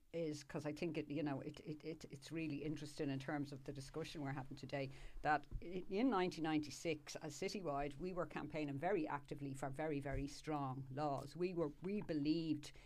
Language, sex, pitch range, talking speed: English, female, 140-165 Hz, 195 wpm